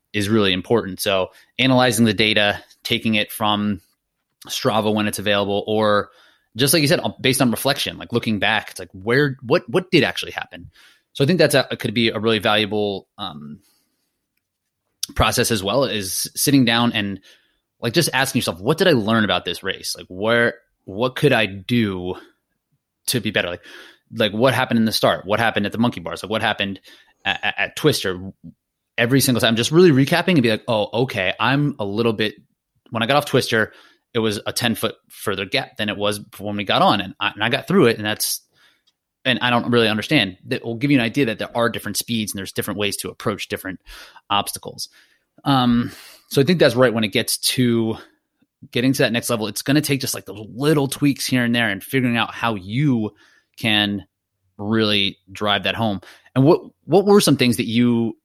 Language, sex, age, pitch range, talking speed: English, male, 20-39, 105-125 Hz, 210 wpm